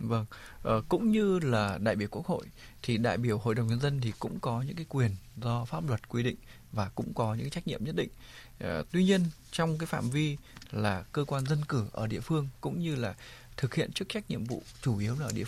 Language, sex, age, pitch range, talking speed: Vietnamese, male, 20-39, 115-150 Hz, 240 wpm